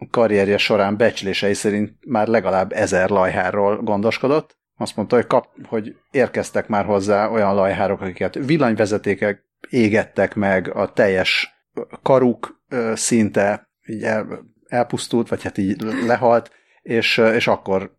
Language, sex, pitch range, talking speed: Hungarian, male, 100-115 Hz, 115 wpm